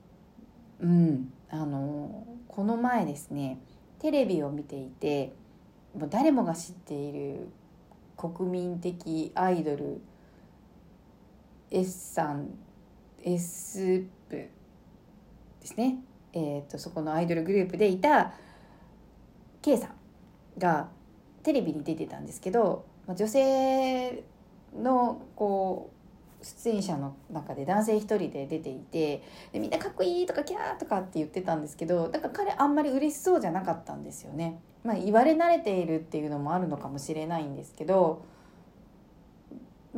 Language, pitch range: Japanese, 160-235 Hz